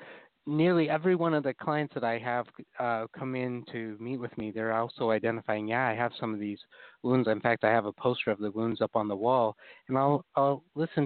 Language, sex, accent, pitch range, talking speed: English, male, American, 115-140 Hz, 235 wpm